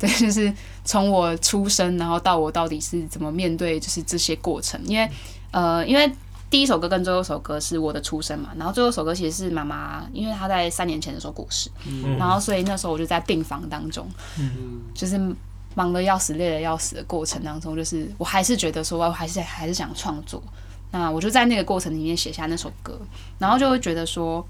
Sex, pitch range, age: female, 135-190 Hz, 10-29